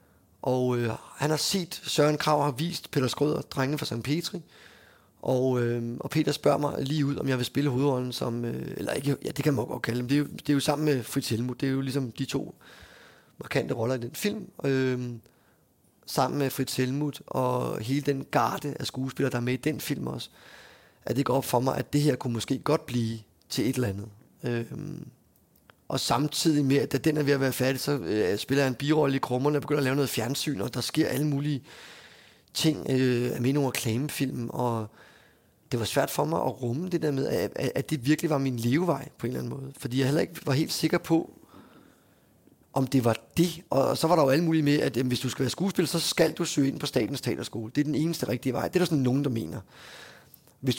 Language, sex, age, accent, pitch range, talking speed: Danish, male, 30-49, native, 125-150 Hz, 240 wpm